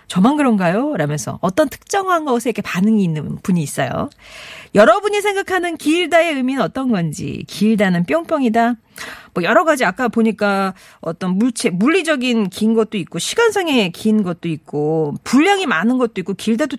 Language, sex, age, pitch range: Korean, female, 40-59, 195-295 Hz